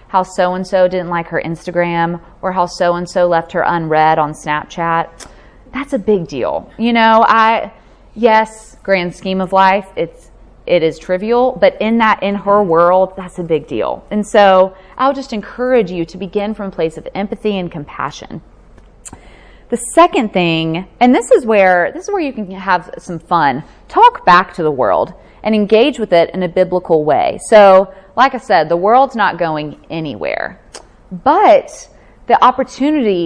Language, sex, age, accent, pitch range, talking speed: English, female, 20-39, American, 175-250 Hz, 180 wpm